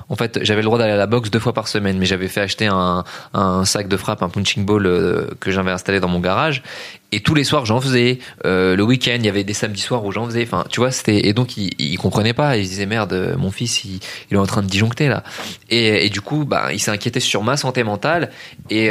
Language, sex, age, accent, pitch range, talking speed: French, male, 20-39, French, 100-120 Hz, 280 wpm